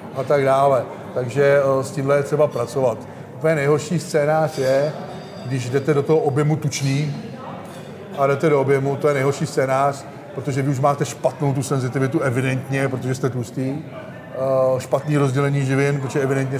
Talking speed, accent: 165 wpm, native